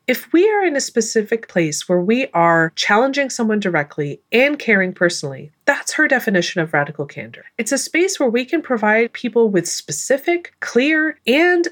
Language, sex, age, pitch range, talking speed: English, female, 30-49, 175-270 Hz, 175 wpm